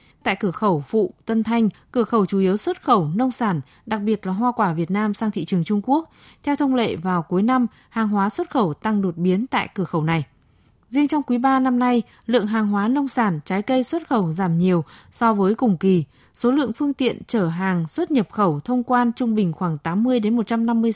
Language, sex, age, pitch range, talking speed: Vietnamese, female, 20-39, 190-245 Hz, 230 wpm